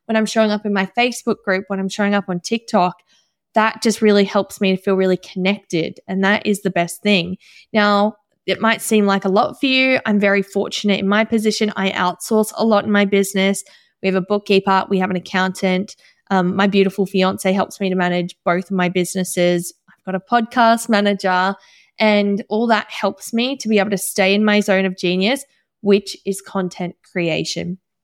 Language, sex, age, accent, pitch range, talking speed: English, female, 20-39, Australian, 190-230 Hz, 205 wpm